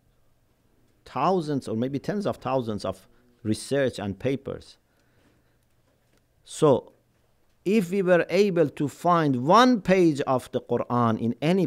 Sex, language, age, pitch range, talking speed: male, English, 50-69, 115-160 Hz, 125 wpm